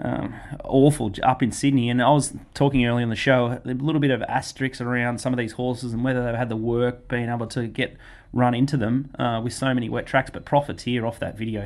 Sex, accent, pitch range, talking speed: male, Australian, 110-125 Hz, 245 wpm